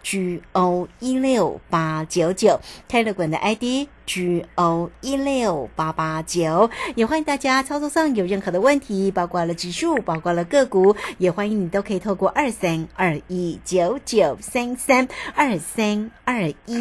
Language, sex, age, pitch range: Chinese, female, 50-69, 175-245 Hz